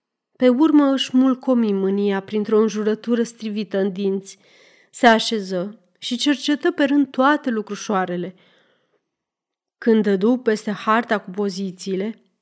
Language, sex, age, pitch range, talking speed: Romanian, female, 30-49, 200-250 Hz, 115 wpm